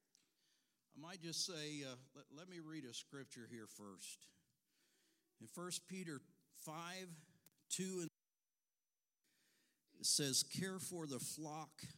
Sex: male